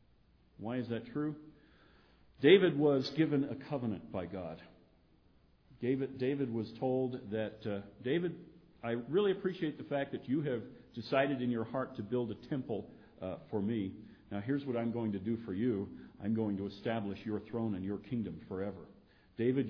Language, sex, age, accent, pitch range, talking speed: English, male, 50-69, American, 100-120 Hz, 175 wpm